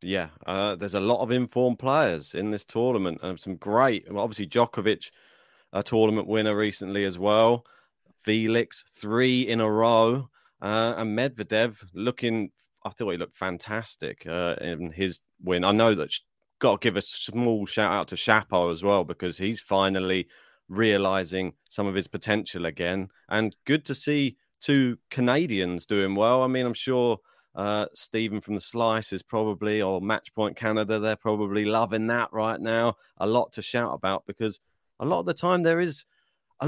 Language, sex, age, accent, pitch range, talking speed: English, male, 30-49, British, 100-125 Hz, 175 wpm